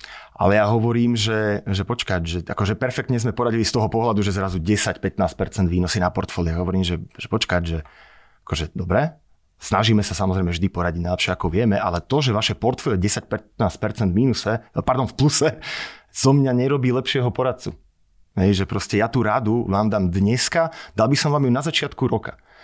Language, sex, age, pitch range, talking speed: Slovak, male, 30-49, 100-130 Hz, 185 wpm